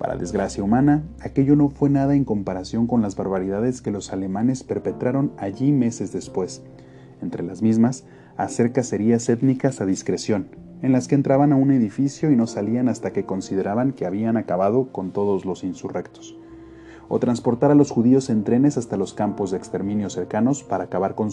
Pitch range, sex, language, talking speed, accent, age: 95-130 Hz, male, Spanish, 175 wpm, Mexican, 30-49